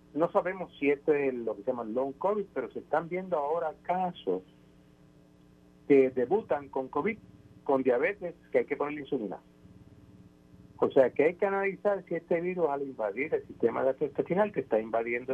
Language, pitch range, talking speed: Spanish, 120-175 Hz, 185 wpm